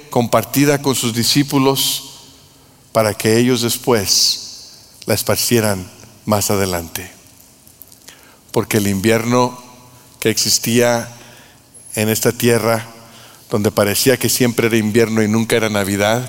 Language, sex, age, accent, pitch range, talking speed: Spanish, male, 50-69, Mexican, 115-145 Hz, 110 wpm